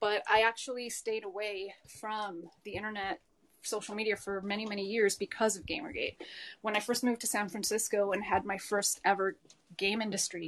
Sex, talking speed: female, 175 wpm